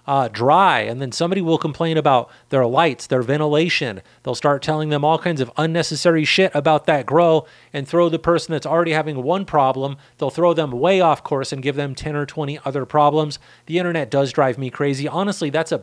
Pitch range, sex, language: 130-155 Hz, male, English